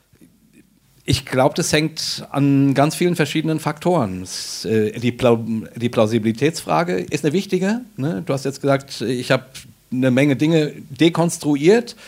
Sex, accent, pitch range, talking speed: male, German, 125-160 Hz, 135 wpm